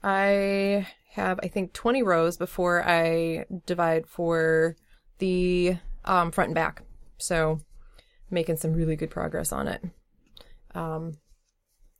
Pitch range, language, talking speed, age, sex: 155-180 Hz, English, 120 wpm, 20-39, female